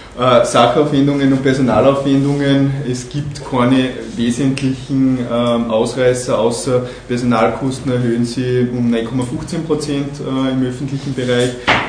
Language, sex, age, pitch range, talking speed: German, male, 20-39, 125-140 Hz, 85 wpm